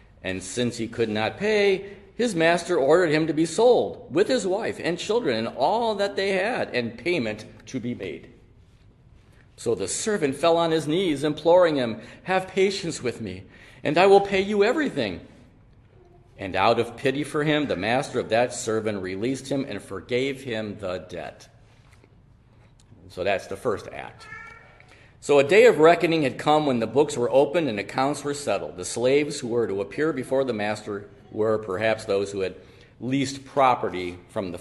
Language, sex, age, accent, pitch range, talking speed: English, male, 50-69, American, 105-140 Hz, 180 wpm